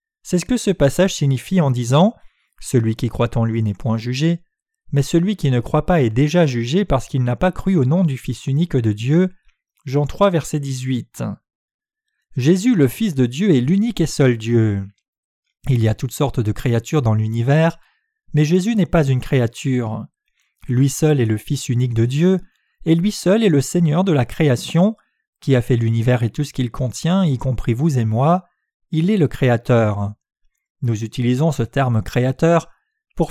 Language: French